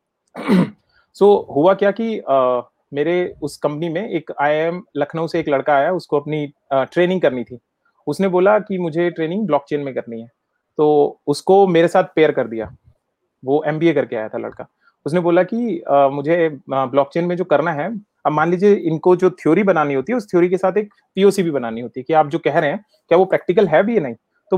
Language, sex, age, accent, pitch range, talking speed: Hindi, male, 30-49, native, 145-185 Hz, 210 wpm